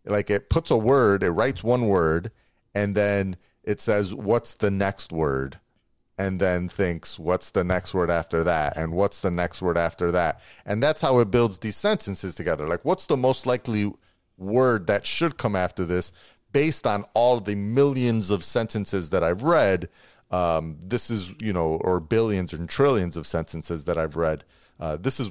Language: English